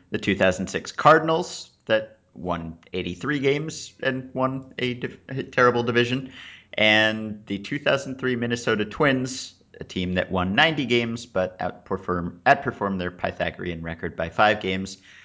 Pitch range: 90-130 Hz